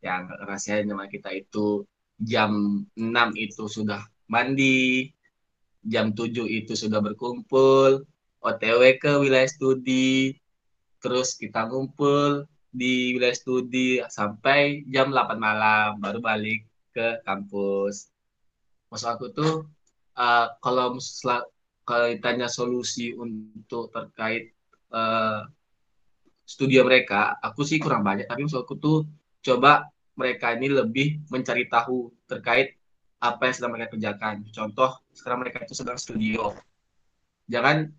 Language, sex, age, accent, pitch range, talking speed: Indonesian, male, 20-39, native, 110-130 Hz, 115 wpm